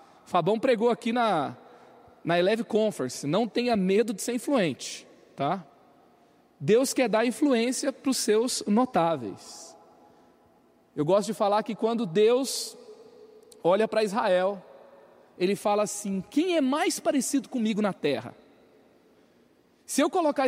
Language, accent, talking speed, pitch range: Portuguese, Brazilian, 130 wpm, 205-285 Hz